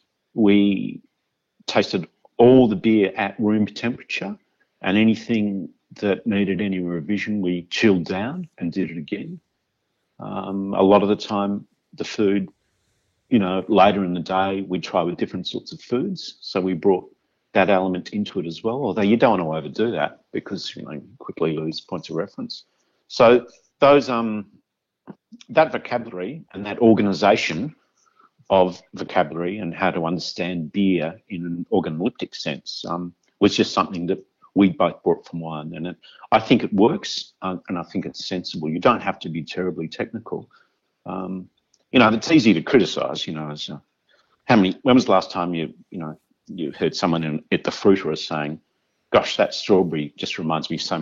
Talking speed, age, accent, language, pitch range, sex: 180 wpm, 50-69, Australian, English, 85-105 Hz, male